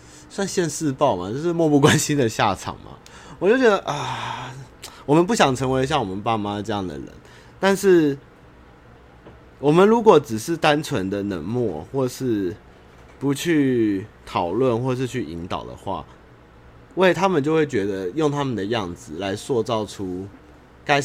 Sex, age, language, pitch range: male, 30-49, Chinese, 90-140 Hz